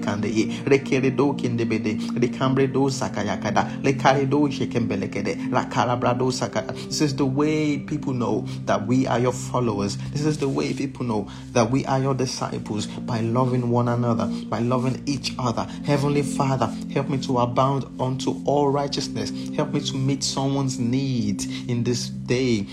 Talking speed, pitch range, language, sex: 125 wpm, 115-145 Hz, English, male